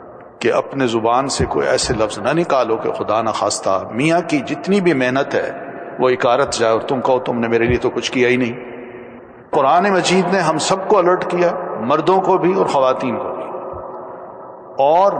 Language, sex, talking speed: Urdu, male, 195 wpm